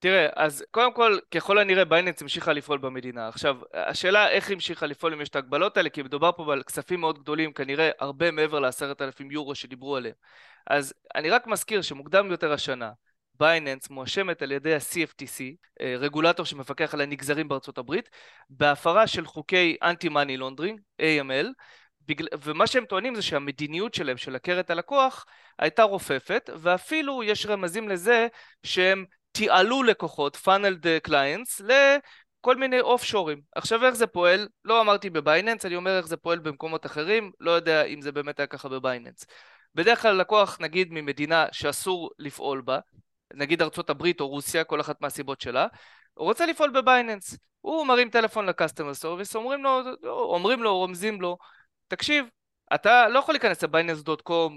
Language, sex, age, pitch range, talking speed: Hebrew, male, 20-39, 145-205 Hz, 140 wpm